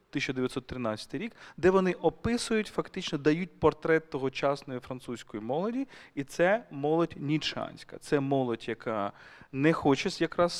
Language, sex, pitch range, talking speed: Ukrainian, male, 130-175 Hz, 120 wpm